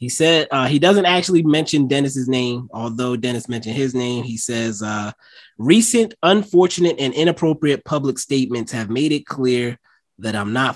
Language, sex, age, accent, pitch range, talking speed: English, male, 20-39, American, 110-150 Hz, 165 wpm